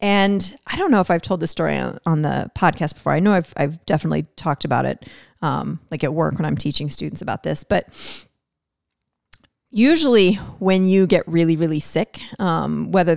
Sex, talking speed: female, 185 wpm